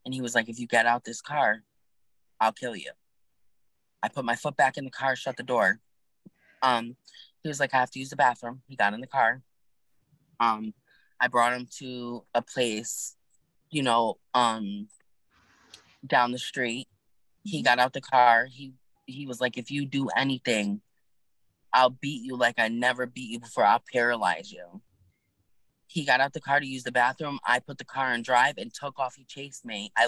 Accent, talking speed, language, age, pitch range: American, 200 wpm, English, 20-39, 110-130 Hz